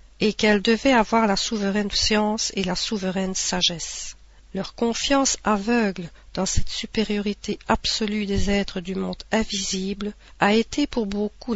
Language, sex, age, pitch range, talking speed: French, female, 50-69, 190-230 Hz, 140 wpm